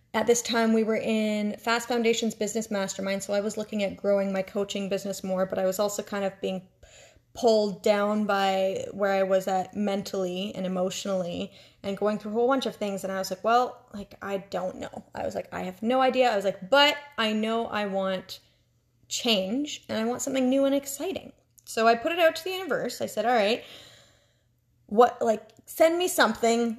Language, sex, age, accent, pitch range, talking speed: English, female, 20-39, American, 195-235 Hz, 210 wpm